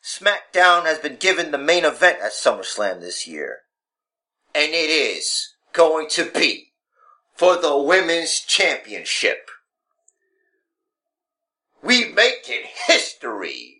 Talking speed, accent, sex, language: 110 wpm, American, male, English